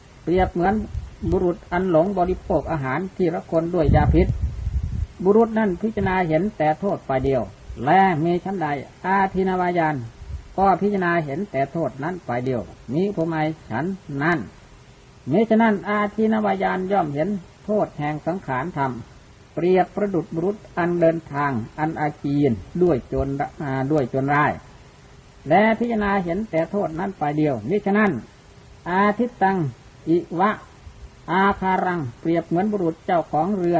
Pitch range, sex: 150-190 Hz, female